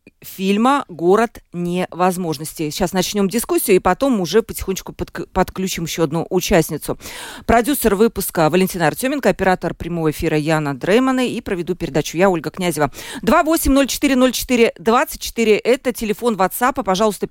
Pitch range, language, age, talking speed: 175-235 Hz, Russian, 40-59, 125 wpm